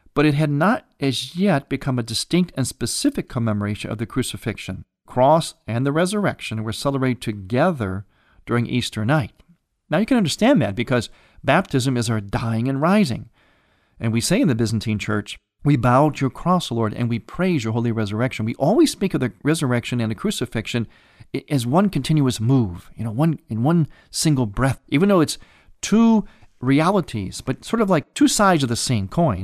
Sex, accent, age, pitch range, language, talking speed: male, American, 40-59, 110-150 Hz, English, 185 wpm